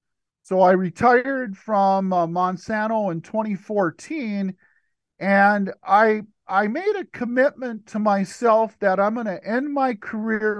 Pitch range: 165-215 Hz